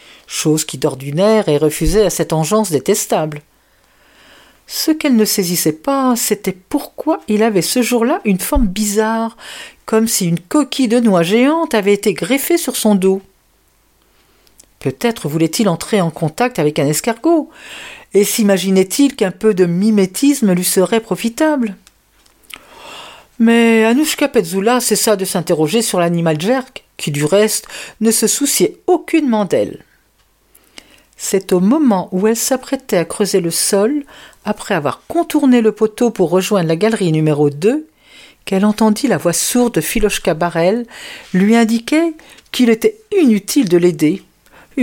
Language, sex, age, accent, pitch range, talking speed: French, female, 50-69, French, 185-240 Hz, 145 wpm